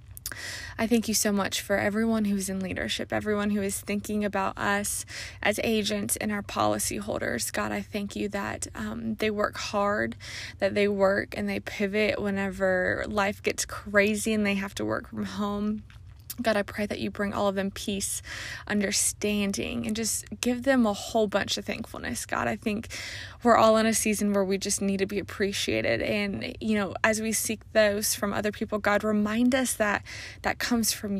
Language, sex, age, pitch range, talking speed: English, female, 20-39, 195-220 Hz, 190 wpm